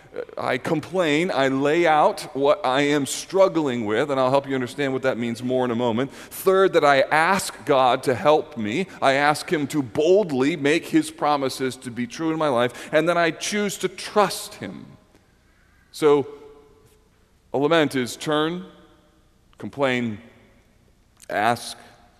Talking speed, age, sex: 155 wpm, 40-59, male